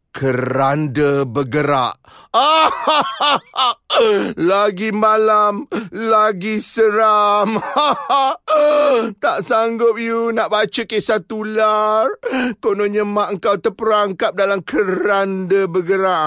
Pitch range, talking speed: 205-275 Hz, 100 wpm